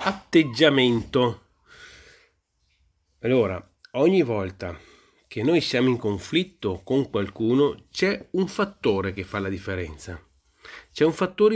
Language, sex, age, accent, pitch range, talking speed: Italian, male, 30-49, native, 105-145 Hz, 110 wpm